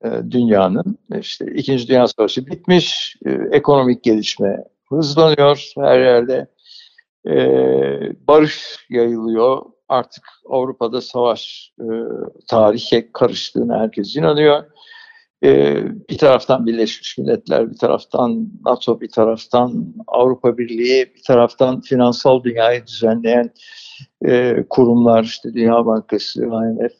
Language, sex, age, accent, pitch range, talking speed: Turkish, male, 60-79, native, 120-180 Hz, 100 wpm